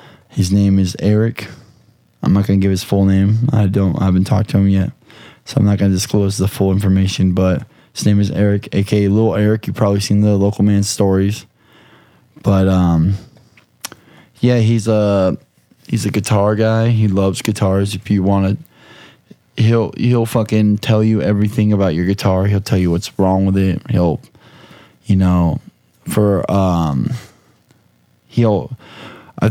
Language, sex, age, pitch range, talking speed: English, male, 20-39, 95-110 Hz, 165 wpm